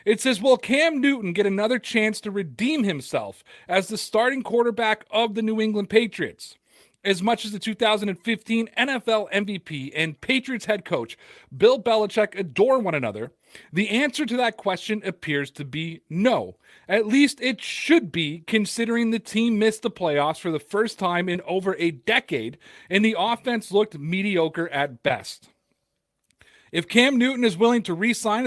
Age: 40-59